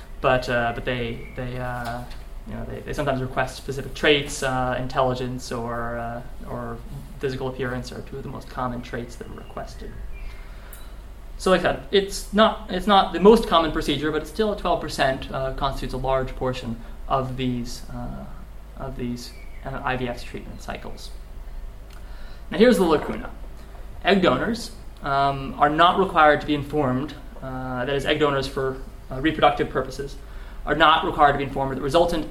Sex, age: male, 20-39